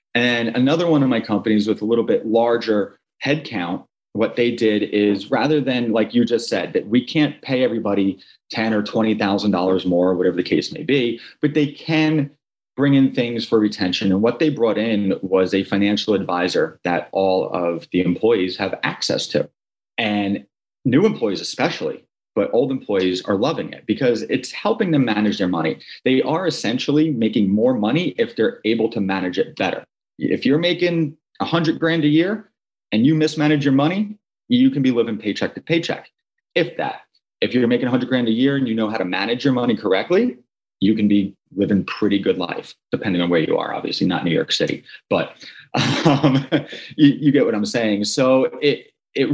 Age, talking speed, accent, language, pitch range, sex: 30-49, 190 wpm, American, English, 100-145 Hz, male